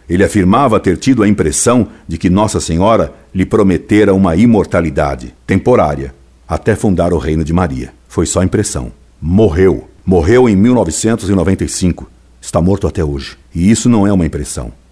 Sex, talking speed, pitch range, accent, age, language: male, 155 wpm, 75-105 Hz, Brazilian, 60-79, Portuguese